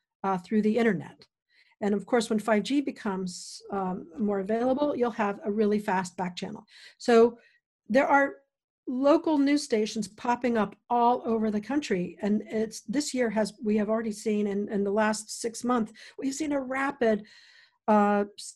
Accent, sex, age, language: American, female, 50-69, English